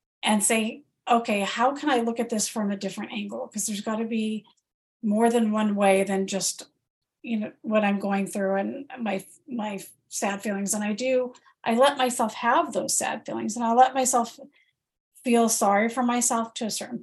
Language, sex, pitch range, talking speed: English, female, 210-255 Hz, 195 wpm